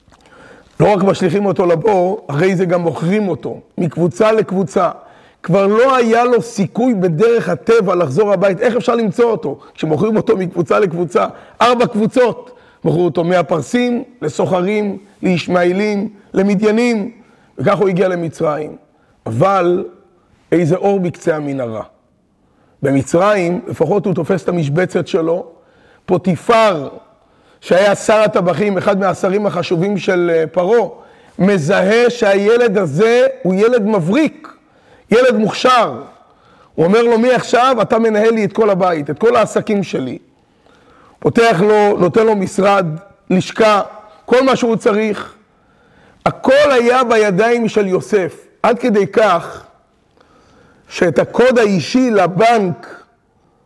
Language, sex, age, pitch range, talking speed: Hebrew, male, 30-49, 180-225 Hz, 120 wpm